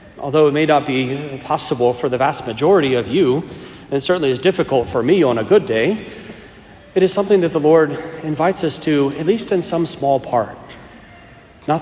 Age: 40-59